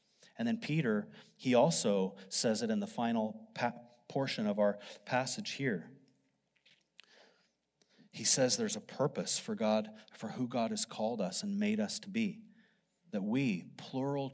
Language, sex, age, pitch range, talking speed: English, male, 30-49, 130-215 Hz, 150 wpm